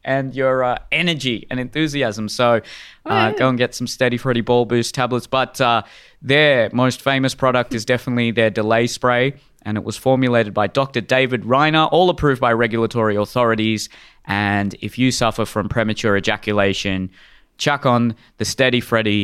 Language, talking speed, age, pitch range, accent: English, 165 wpm, 20-39, 105-130 Hz, Australian